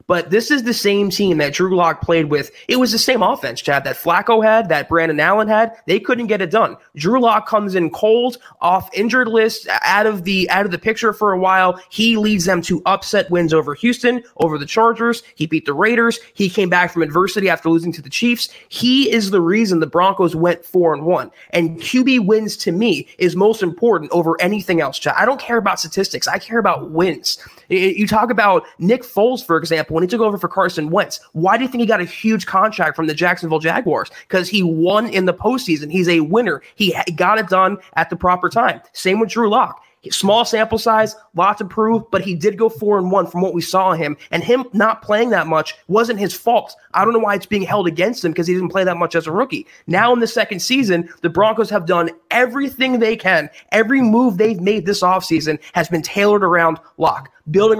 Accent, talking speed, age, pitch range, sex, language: American, 225 wpm, 20-39, 170-220 Hz, male, English